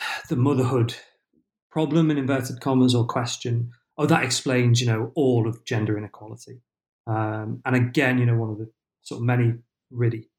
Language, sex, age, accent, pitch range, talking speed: English, male, 40-59, British, 110-130 Hz, 170 wpm